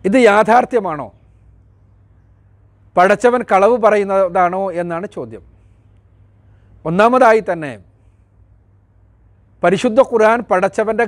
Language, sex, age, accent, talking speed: Malayalam, male, 40-59, native, 65 wpm